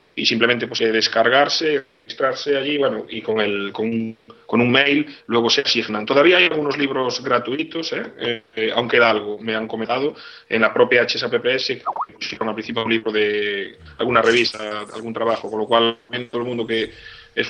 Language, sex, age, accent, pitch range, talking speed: English, male, 30-49, Spanish, 110-130 Hz, 185 wpm